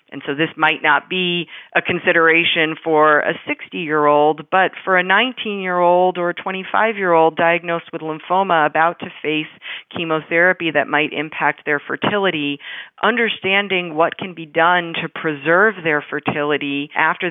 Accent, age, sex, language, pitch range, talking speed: American, 40-59, female, English, 150-180 Hz, 160 wpm